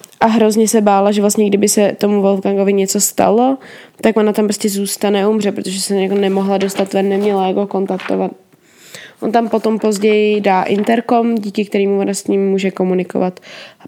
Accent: native